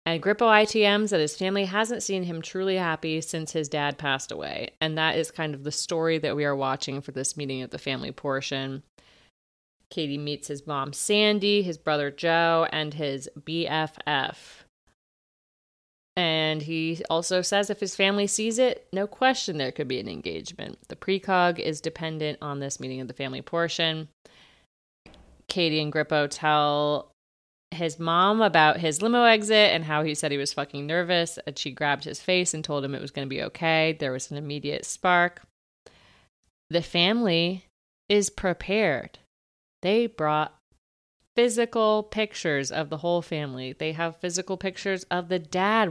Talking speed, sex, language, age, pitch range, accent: 165 wpm, female, English, 30-49, 145-190 Hz, American